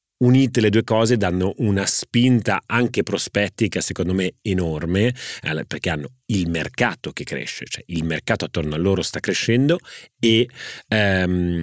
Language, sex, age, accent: Italian, male, 30-49, native